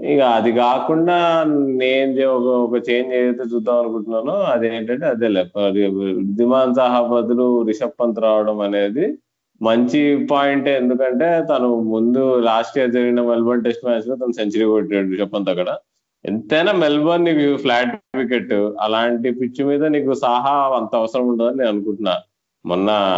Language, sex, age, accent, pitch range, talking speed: Telugu, male, 20-39, native, 105-130 Hz, 135 wpm